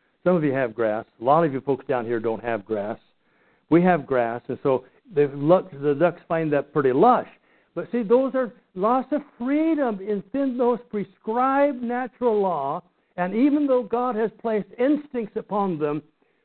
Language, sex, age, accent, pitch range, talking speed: English, male, 60-79, American, 150-225 Hz, 175 wpm